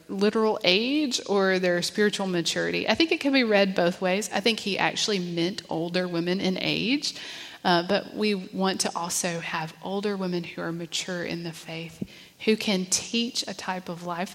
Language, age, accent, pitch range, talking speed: English, 30-49, American, 175-210 Hz, 190 wpm